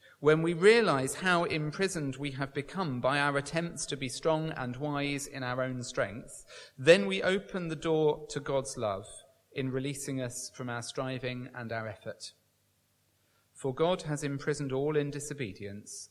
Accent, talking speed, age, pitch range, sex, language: British, 165 wpm, 40-59, 125-155 Hz, male, English